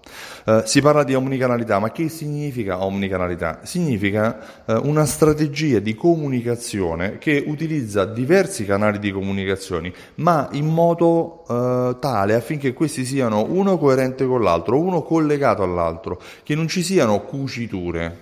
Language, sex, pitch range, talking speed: Italian, male, 100-145 Hz, 135 wpm